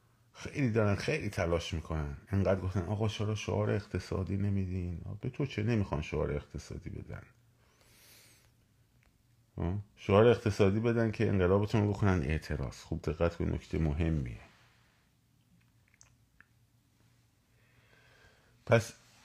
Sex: male